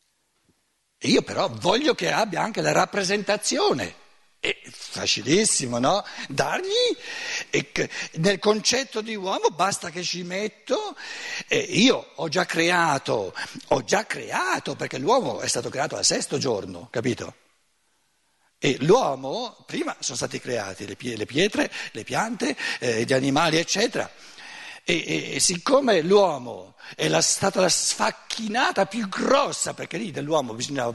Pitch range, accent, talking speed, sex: 150-245 Hz, native, 130 wpm, male